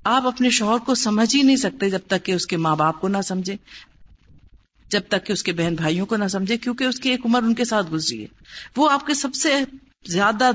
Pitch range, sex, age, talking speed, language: 180-245 Hz, female, 50-69, 250 wpm, Urdu